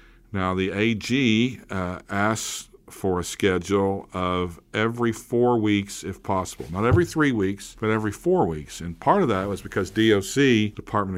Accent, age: American, 50-69